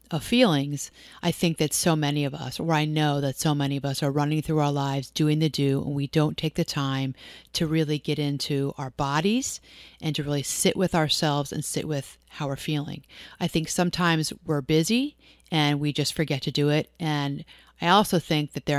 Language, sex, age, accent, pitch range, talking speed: English, female, 40-59, American, 145-160 Hz, 215 wpm